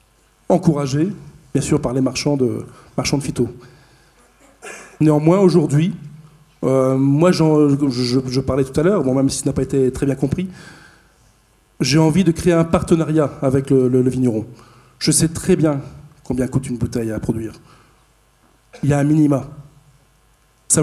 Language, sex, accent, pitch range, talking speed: French, male, French, 130-160 Hz, 170 wpm